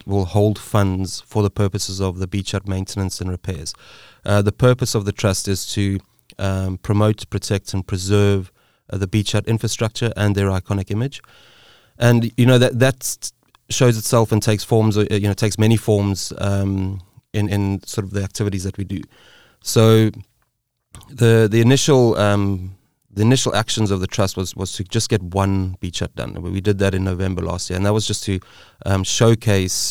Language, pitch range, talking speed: English, 95-110 Hz, 190 wpm